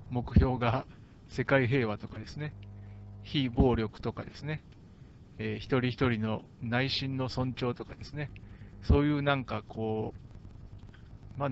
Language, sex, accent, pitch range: Japanese, male, native, 110-140 Hz